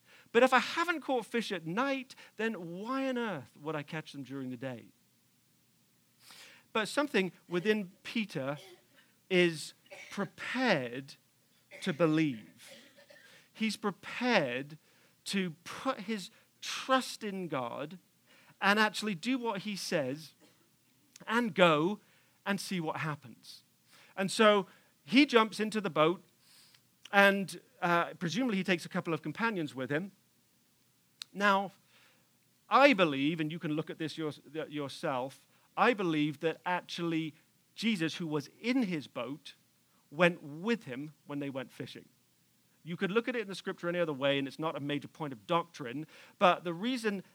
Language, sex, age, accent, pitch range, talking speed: English, male, 40-59, British, 155-215 Hz, 145 wpm